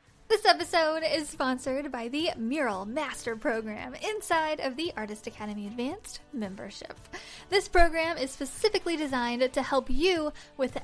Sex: female